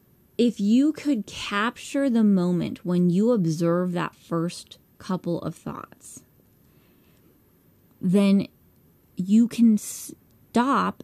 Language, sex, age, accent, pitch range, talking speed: English, female, 20-39, American, 180-245 Hz, 100 wpm